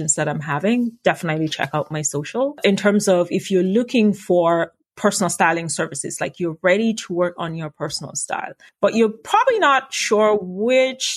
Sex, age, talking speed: female, 30-49, 175 wpm